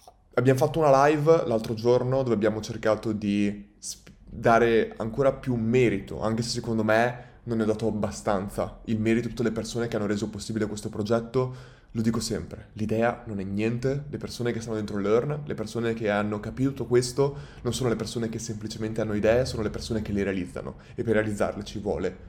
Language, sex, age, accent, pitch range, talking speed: Italian, male, 20-39, native, 105-120 Hz, 200 wpm